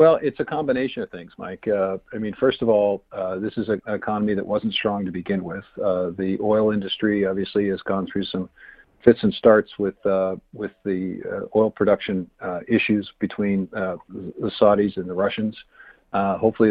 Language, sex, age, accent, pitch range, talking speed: English, male, 50-69, American, 95-105 Hz, 195 wpm